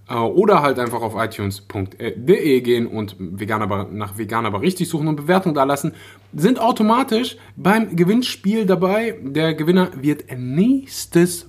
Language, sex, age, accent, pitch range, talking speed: German, male, 20-39, German, 100-160 Hz, 140 wpm